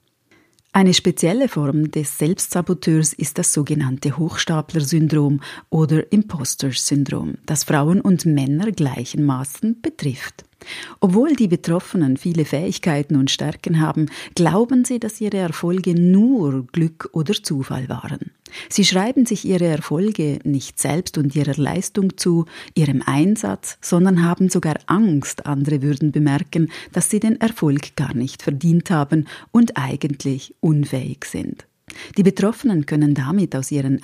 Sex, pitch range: female, 145-195 Hz